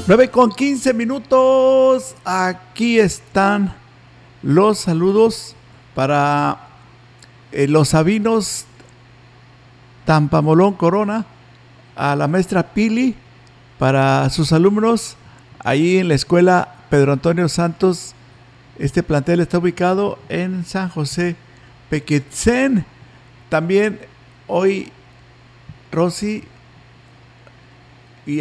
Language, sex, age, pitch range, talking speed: Spanish, male, 50-69, 135-185 Hz, 85 wpm